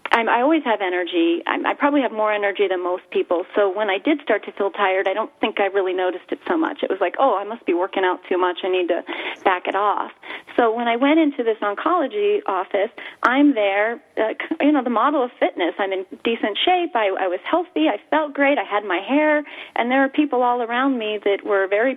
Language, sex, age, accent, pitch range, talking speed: English, female, 30-49, American, 205-290 Hz, 245 wpm